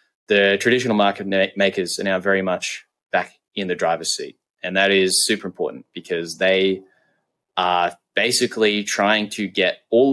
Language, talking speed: English, 155 wpm